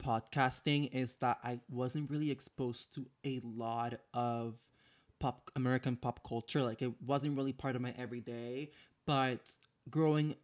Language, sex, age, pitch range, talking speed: English, male, 20-39, 120-140 Hz, 145 wpm